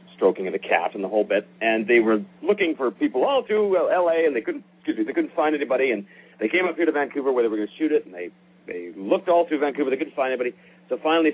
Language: English